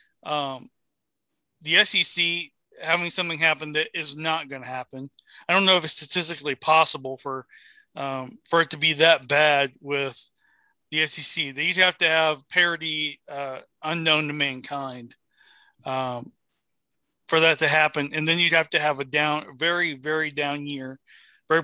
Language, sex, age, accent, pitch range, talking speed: English, male, 40-59, American, 145-180 Hz, 160 wpm